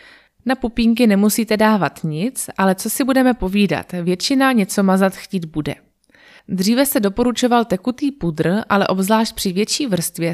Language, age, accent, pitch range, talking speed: Czech, 20-39, native, 185-235 Hz, 145 wpm